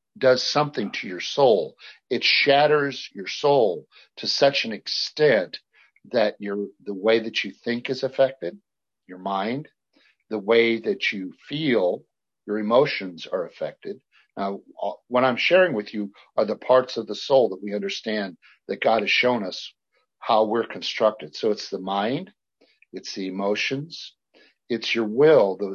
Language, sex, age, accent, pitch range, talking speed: English, male, 50-69, American, 105-135 Hz, 160 wpm